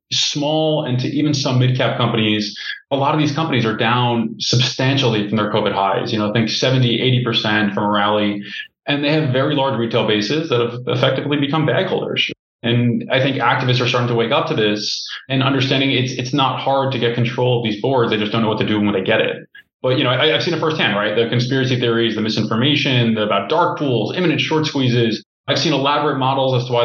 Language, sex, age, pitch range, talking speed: English, male, 20-39, 115-140 Hz, 230 wpm